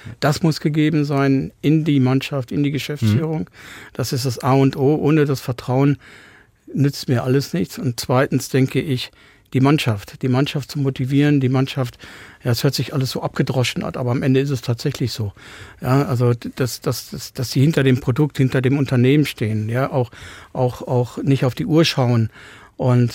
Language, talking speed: German, 190 wpm